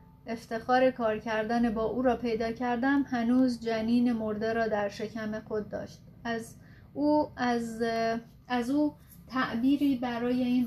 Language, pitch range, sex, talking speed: Persian, 210-245 Hz, female, 140 wpm